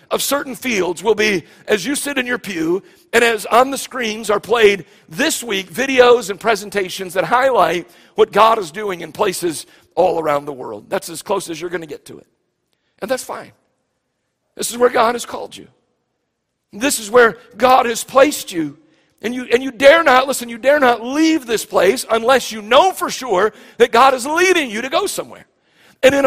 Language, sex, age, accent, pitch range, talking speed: English, male, 50-69, American, 210-270 Hz, 205 wpm